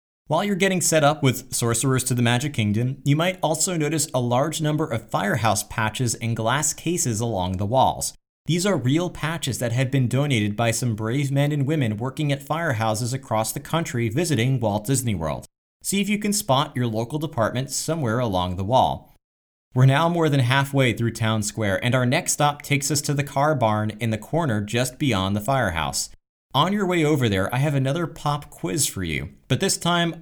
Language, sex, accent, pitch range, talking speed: English, male, American, 110-150 Hz, 205 wpm